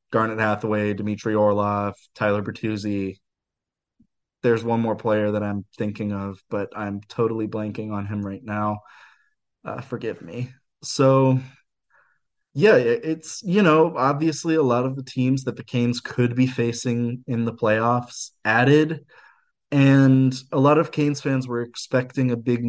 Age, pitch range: 20-39, 110-140 Hz